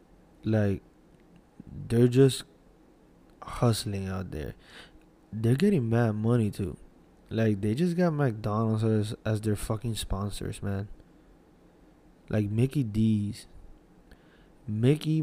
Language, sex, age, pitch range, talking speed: English, male, 20-39, 105-130 Hz, 100 wpm